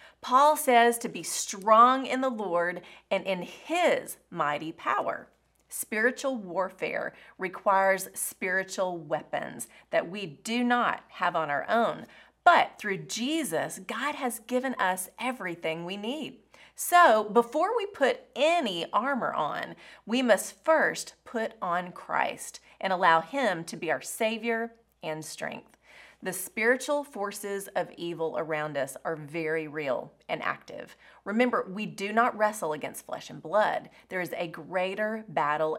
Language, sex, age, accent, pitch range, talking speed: English, female, 30-49, American, 185-260 Hz, 140 wpm